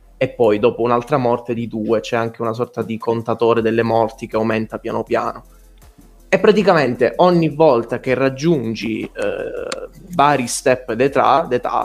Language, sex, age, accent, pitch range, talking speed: Italian, male, 20-39, native, 115-130 Hz, 145 wpm